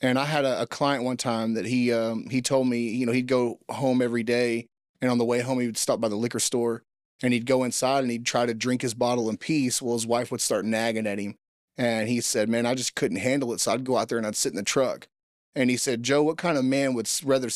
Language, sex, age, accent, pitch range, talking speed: English, male, 30-49, American, 120-140 Hz, 285 wpm